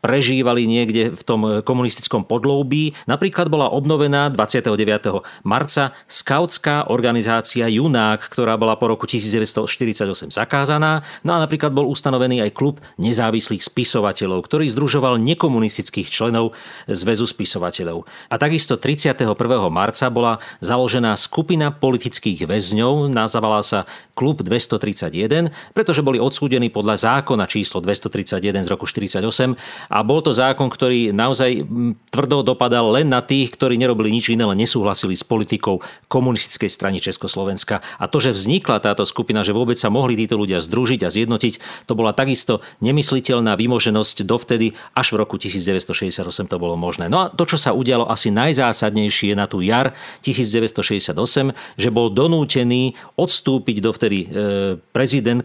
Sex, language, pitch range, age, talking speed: male, Slovak, 105-130 Hz, 40-59, 135 wpm